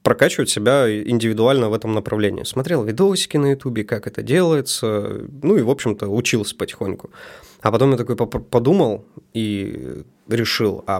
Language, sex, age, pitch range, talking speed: Russian, male, 20-39, 105-135 Hz, 145 wpm